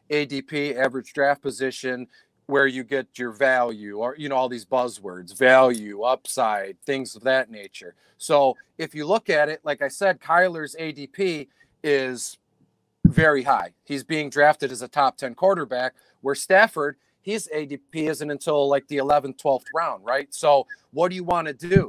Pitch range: 130-155 Hz